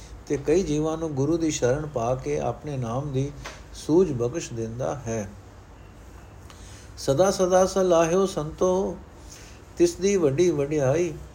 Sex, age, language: male, 60-79, Punjabi